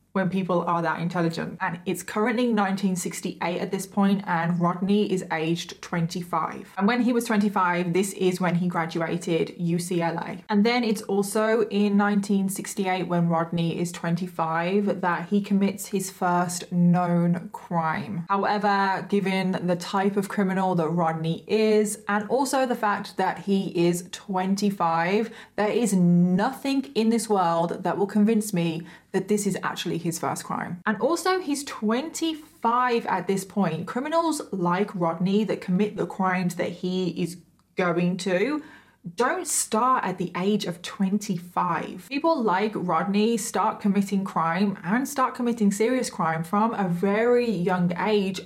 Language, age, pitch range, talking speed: English, 20-39, 175-210 Hz, 150 wpm